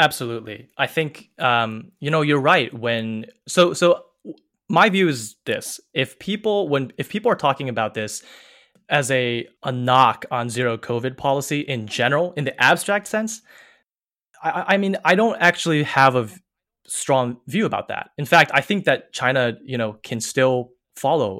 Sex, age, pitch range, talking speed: male, 20-39, 115-155 Hz, 175 wpm